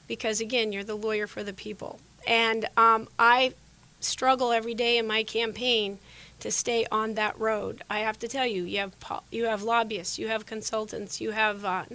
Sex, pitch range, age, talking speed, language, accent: female, 205-230 Hz, 30-49, 190 wpm, English, American